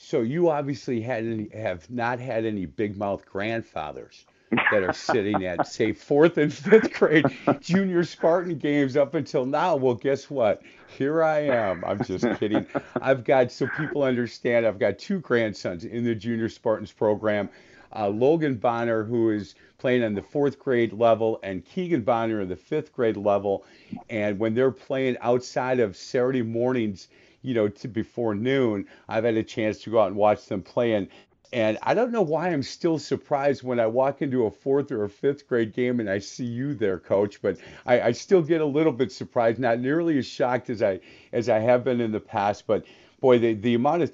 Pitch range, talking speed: 110-135 Hz, 200 wpm